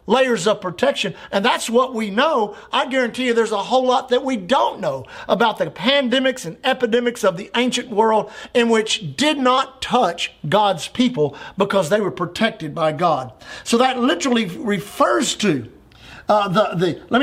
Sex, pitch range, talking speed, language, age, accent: male, 210-265 Hz, 175 wpm, English, 50-69, American